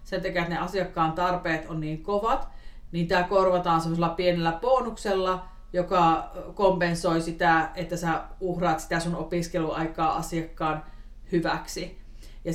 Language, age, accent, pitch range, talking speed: Finnish, 40-59, native, 165-195 Hz, 130 wpm